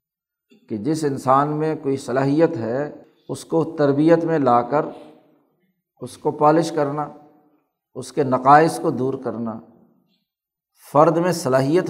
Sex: male